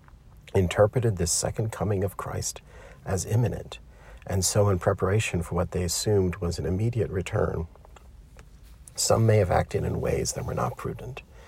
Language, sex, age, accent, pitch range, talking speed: English, male, 50-69, American, 85-105 Hz, 155 wpm